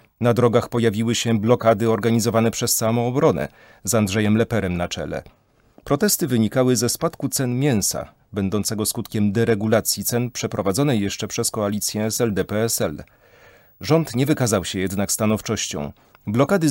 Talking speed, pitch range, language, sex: 130 wpm, 105-130 Hz, Polish, male